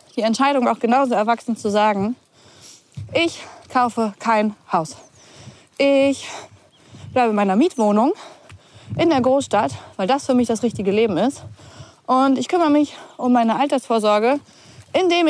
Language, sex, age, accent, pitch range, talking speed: German, female, 20-39, German, 200-275 Hz, 135 wpm